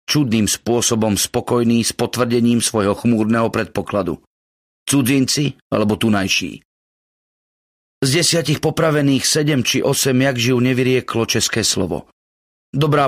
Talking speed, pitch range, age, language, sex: 105 wpm, 110-135 Hz, 40-59, Slovak, male